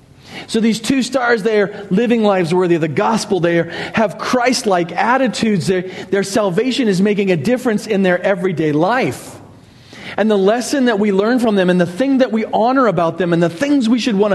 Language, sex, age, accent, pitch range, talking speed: English, male, 40-59, American, 175-225 Hz, 200 wpm